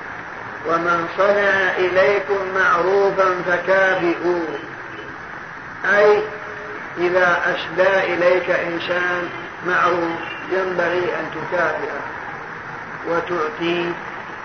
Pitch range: 170-190 Hz